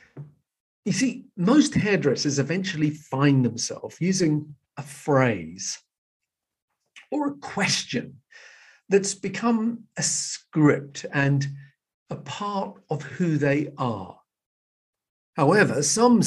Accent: British